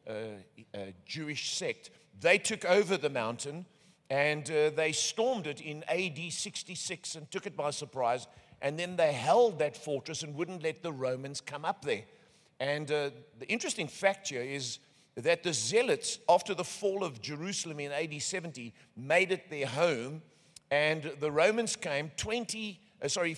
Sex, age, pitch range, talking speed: male, 50-69, 145-185 Hz, 165 wpm